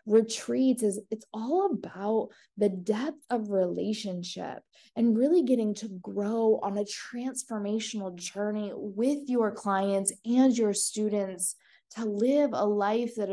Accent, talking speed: American, 130 wpm